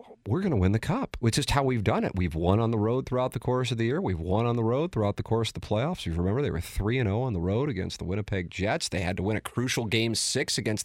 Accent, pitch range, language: American, 100-140 Hz, English